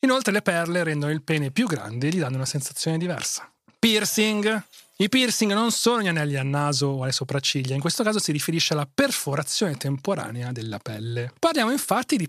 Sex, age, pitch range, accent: male, 30-49, 145-210 Hz, native